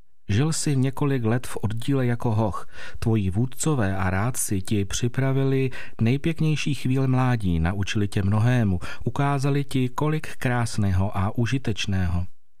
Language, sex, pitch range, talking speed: Czech, male, 100-130 Hz, 125 wpm